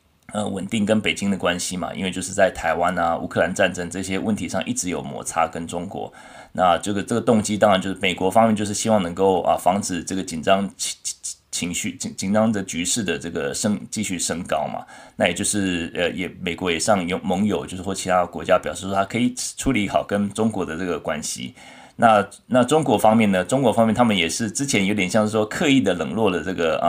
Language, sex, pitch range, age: Chinese, male, 95-110 Hz, 20-39